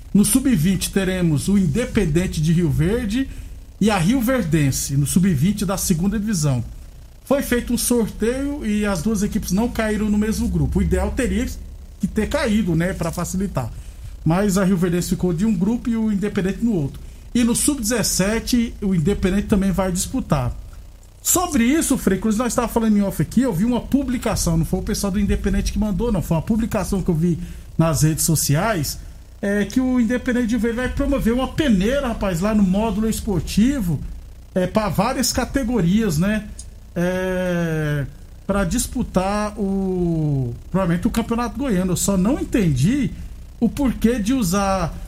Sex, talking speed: male, 170 wpm